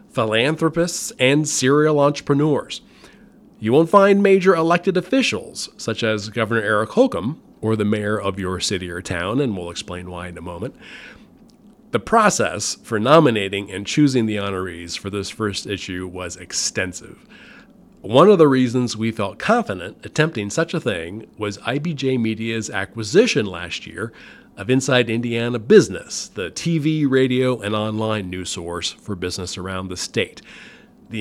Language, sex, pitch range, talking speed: English, male, 100-150 Hz, 150 wpm